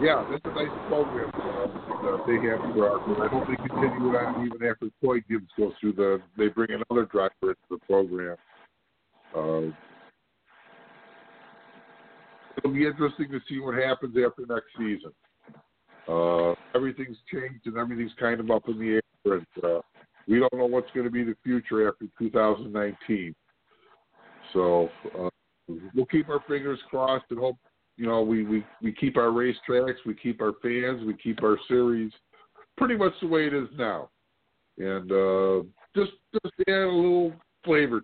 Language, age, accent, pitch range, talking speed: English, 50-69, American, 105-135 Hz, 160 wpm